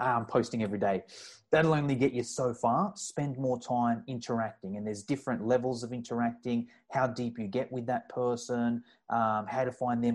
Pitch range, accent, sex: 120-150 Hz, Australian, male